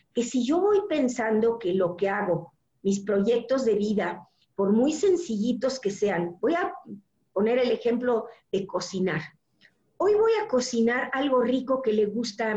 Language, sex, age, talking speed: Spanish, female, 50-69, 165 wpm